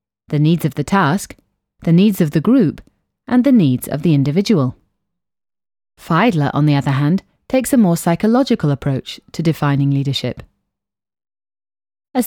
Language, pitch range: English, 130-195 Hz